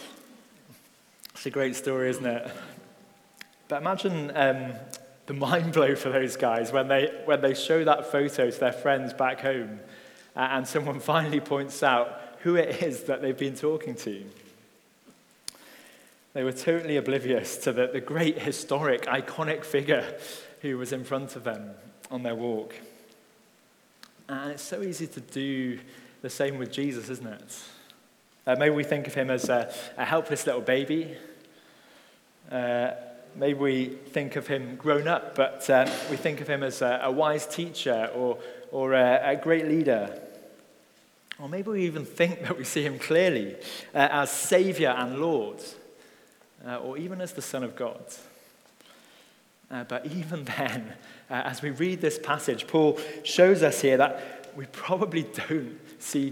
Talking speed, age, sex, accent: 160 wpm, 20-39, male, British